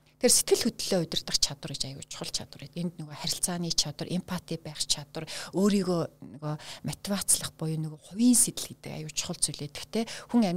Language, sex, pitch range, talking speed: Russian, female, 150-185 Hz, 165 wpm